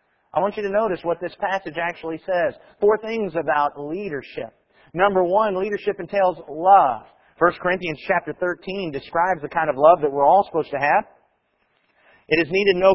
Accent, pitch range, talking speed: American, 160-200 Hz, 175 wpm